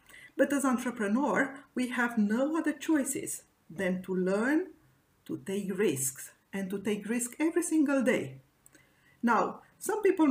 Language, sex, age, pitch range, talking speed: English, female, 50-69, 200-290 Hz, 140 wpm